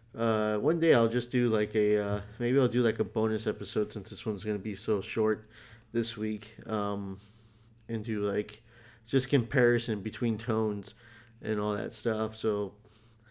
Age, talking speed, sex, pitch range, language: 30-49, 175 wpm, male, 110-125 Hz, English